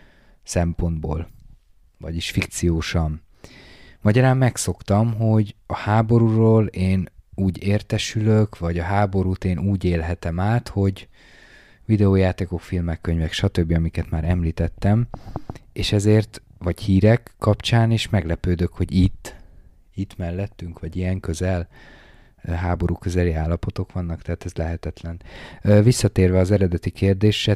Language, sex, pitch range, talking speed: Hungarian, male, 90-105 Hz, 110 wpm